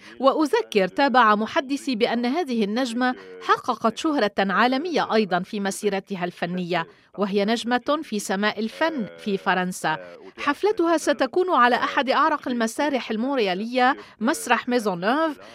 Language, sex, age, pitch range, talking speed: Arabic, female, 40-59, 205-270 Hz, 115 wpm